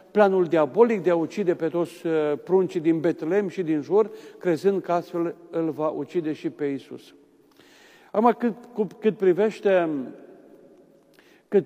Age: 50-69